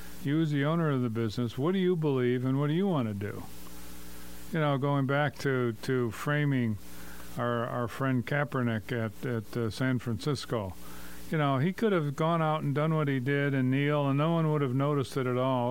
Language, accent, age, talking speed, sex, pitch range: English, American, 50-69, 220 wpm, male, 115-145 Hz